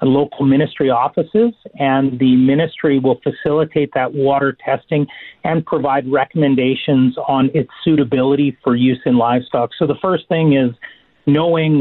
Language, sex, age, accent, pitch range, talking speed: English, male, 40-59, American, 125-150 Hz, 135 wpm